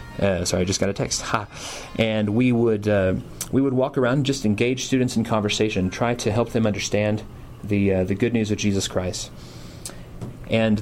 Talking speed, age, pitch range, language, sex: 200 wpm, 30-49, 100-120 Hz, English, male